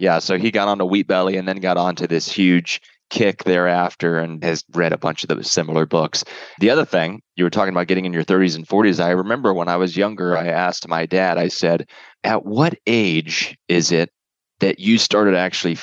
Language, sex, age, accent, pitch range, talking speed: English, male, 20-39, American, 85-105 Hz, 225 wpm